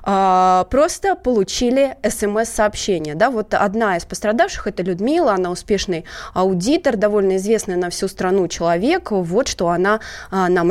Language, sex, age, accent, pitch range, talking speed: Russian, female, 20-39, native, 230-370 Hz, 125 wpm